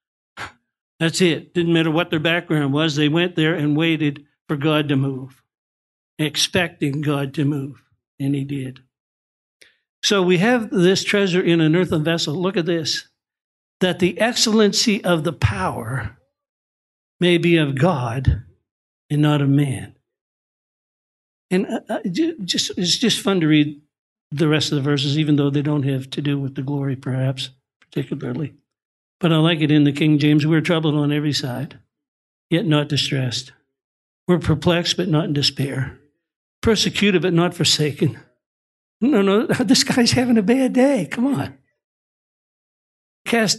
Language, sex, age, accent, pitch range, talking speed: English, male, 60-79, American, 140-180 Hz, 155 wpm